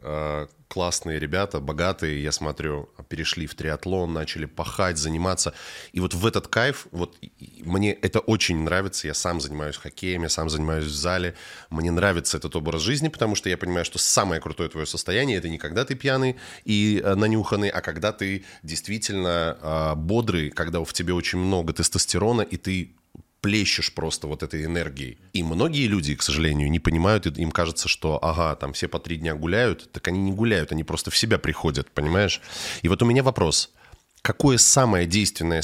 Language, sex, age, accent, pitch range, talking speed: Russian, male, 20-39, native, 80-100 Hz, 175 wpm